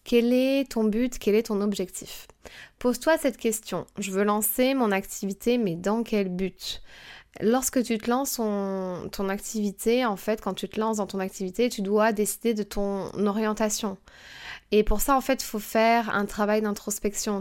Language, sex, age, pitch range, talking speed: French, female, 20-39, 195-235 Hz, 185 wpm